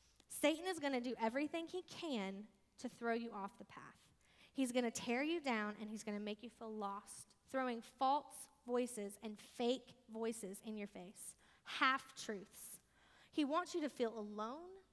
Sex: female